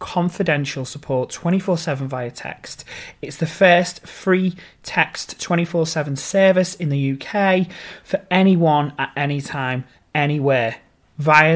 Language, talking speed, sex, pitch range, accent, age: English, 135 wpm, male, 135-165 Hz, British, 30-49